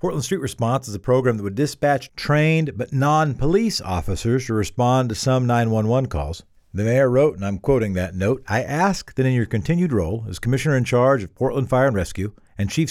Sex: male